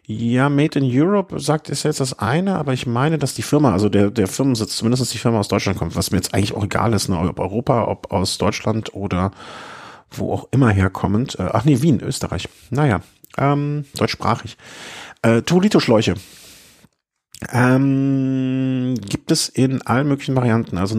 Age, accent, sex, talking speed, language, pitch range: 40-59, German, male, 170 wpm, German, 110-135 Hz